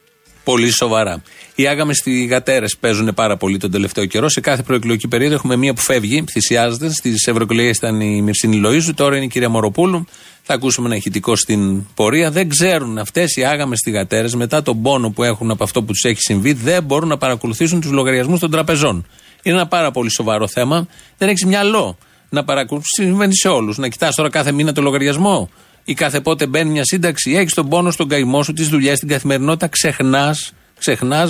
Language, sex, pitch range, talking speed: Greek, male, 120-165 Hz, 190 wpm